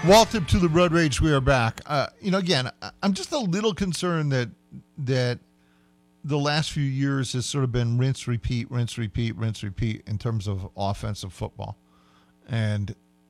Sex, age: male, 50-69